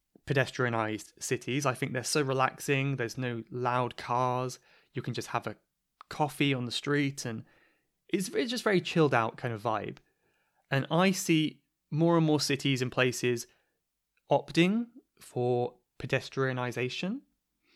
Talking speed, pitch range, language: 140 wpm, 125-165 Hz, English